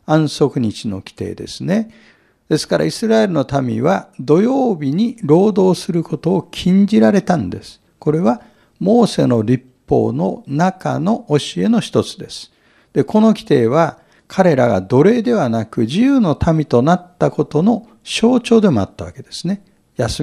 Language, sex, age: Japanese, male, 60-79